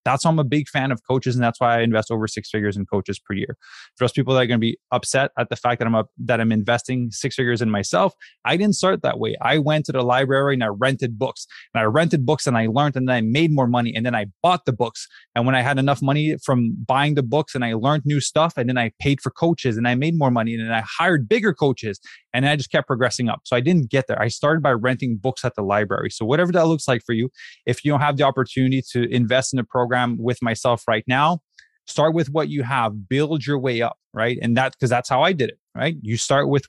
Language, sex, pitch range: English, male, 120-155 Hz